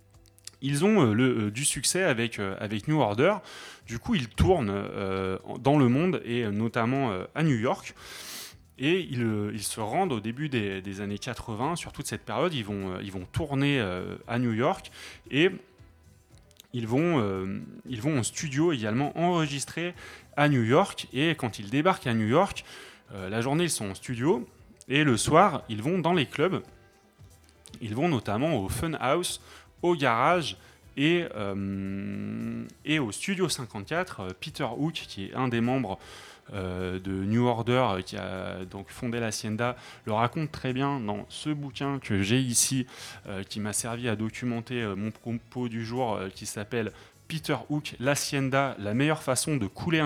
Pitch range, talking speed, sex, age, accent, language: 105-140 Hz, 180 wpm, male, 30-49, French, French